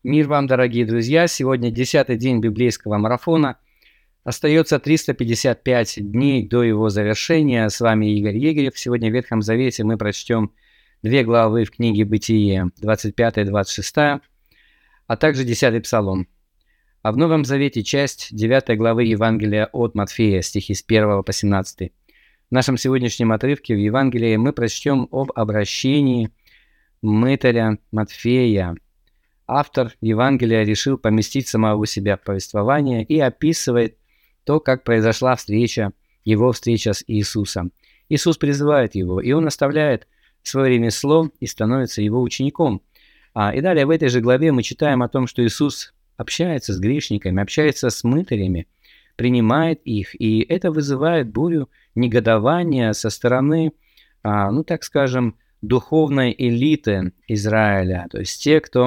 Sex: male